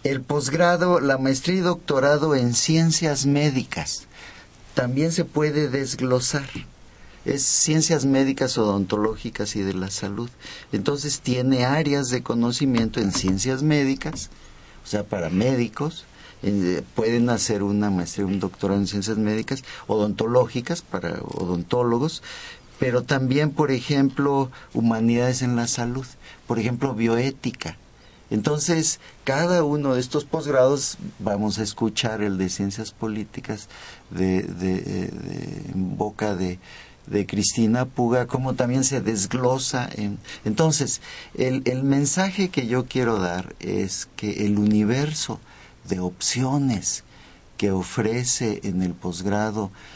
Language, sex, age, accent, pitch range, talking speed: Spanish, male, 50-69, Mexican, 105-135 Hz, 125 wpm